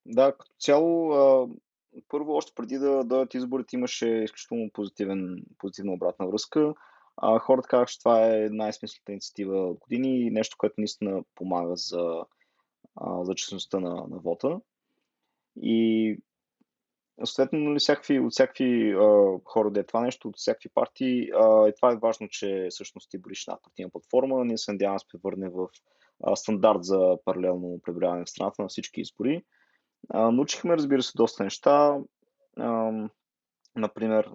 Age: 20-39